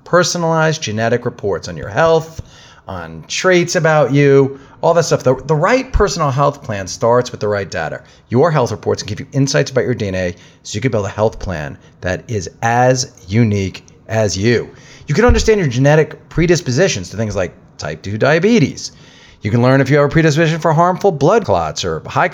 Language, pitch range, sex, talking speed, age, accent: English, 105-145 Hz, male, 195 wpm, 40-59, American